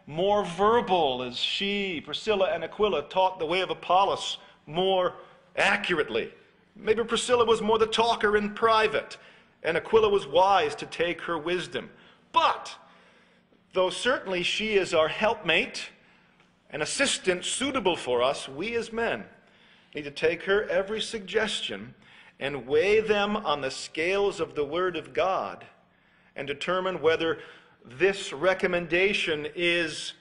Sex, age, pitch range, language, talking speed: male, 40-59, 160-220 Hz, English, 135 wpm